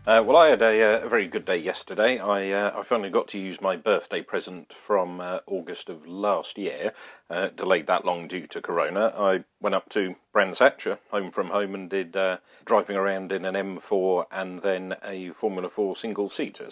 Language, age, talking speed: English, 40-59, 205 wpm